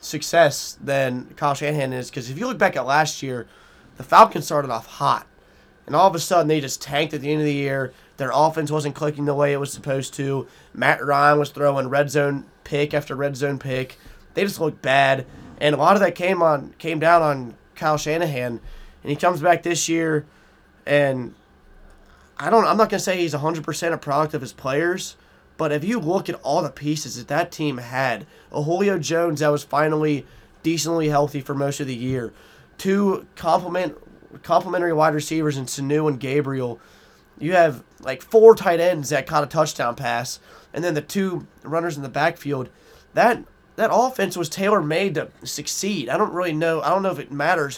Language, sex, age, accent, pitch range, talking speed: English, male, 20-39, American, 140-170 Hz, 200 wpm